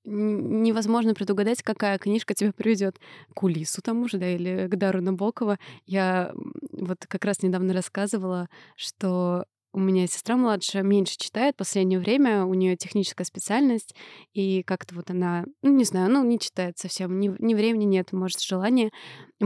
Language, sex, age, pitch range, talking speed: Russian, female, 20-39, 190-230 Hz, 165 wpm